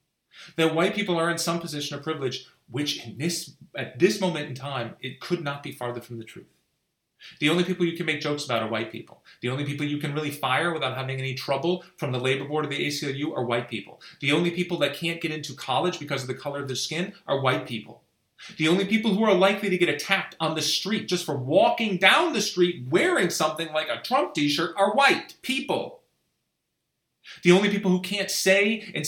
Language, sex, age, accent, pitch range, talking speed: English, male, 30-49, American, 140-190 Hz, 225 wpm